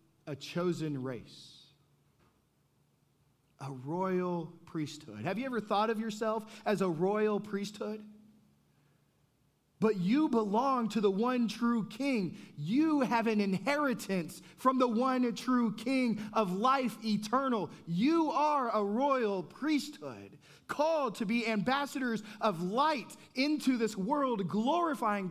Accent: American